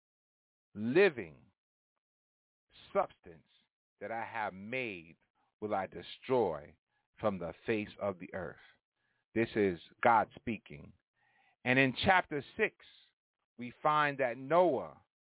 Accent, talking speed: American, 105 wpm